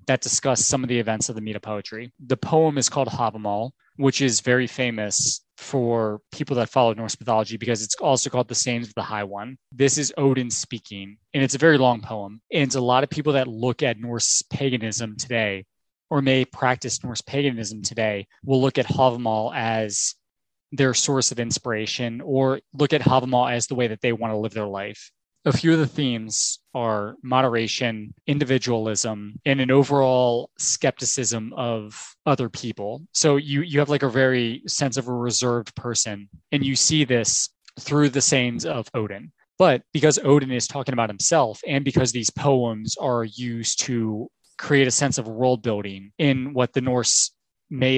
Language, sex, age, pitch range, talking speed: English, male, 20-39, 115-135 Hz, 185 wpm